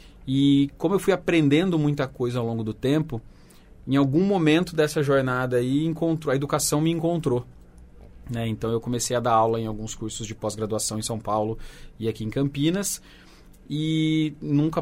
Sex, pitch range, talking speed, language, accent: male, 115-150 Hz, 165 wpm, Portuguese, Brazilian